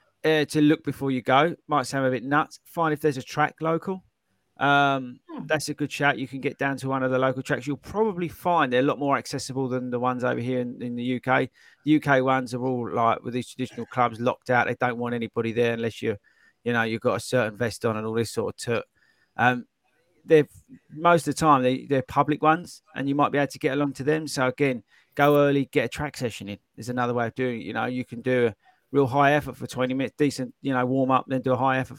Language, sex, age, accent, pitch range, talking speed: English, male, 30-49, British, 125-150 Hz, 265 wpm